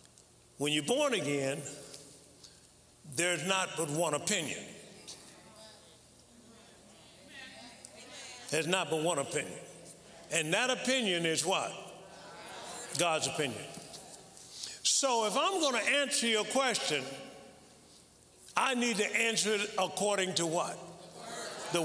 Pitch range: 155-220 Hz